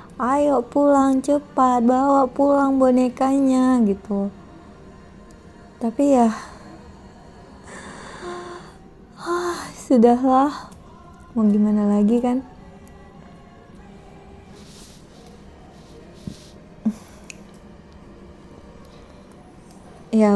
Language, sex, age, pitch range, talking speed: Indonesian, female, 20-39, 200-235 Hz, 45 wpm